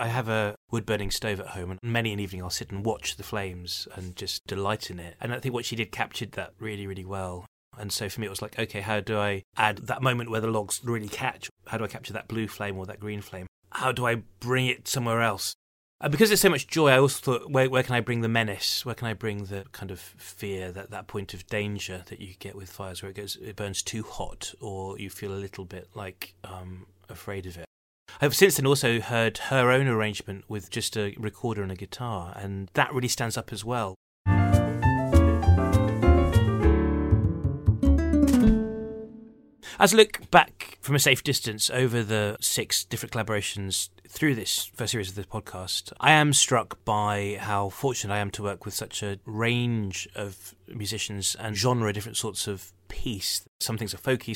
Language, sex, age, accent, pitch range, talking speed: English, male, 30-49, British, 95-115 Hz, 210 wpm